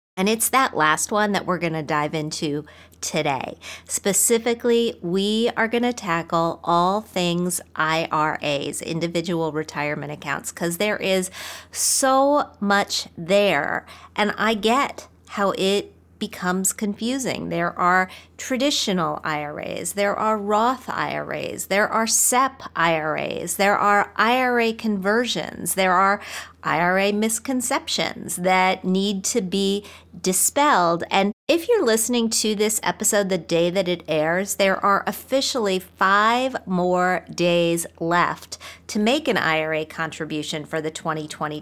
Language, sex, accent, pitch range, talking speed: English, female, American, 165-215 Hz, 130 wpm